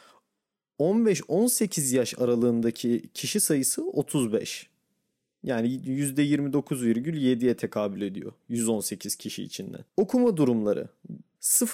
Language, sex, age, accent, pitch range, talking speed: Turkish, male, 30-49, native, 120-175 Hz, 75 wpm